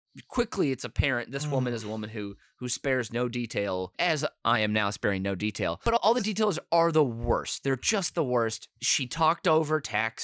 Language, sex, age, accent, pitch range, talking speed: English, male, 30-49, American, 120-200 Hz, 205 wpm